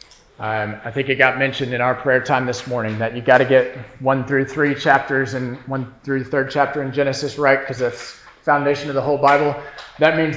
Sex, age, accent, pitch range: male, 40-59, American, 130-180 Hz